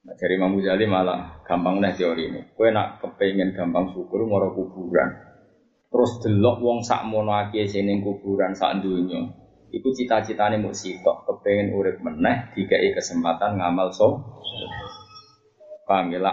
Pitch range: 95-130 Hz